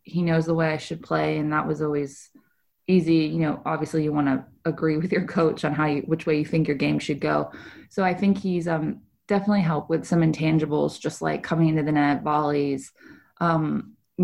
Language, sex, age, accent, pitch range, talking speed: English, female, 20-39, American, 155-180 Hz, 220 wpm